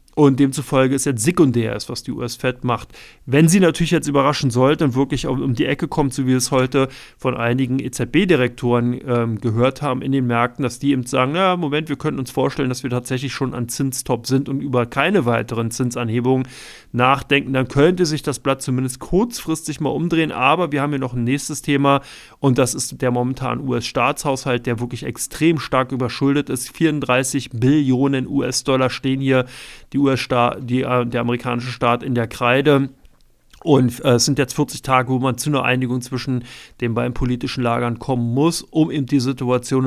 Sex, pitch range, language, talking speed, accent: male, 125-140 Hz, German, 190 wpm, German